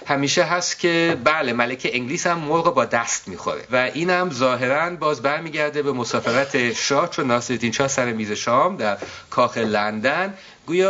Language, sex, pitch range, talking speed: Persian, male, 120-175 Hz, 165 wpm